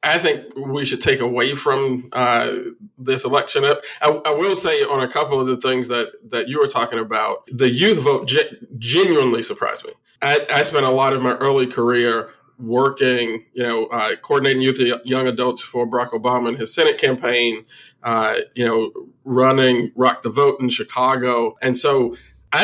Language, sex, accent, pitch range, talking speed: English, male, American, 120-175 Hz, 185 wpm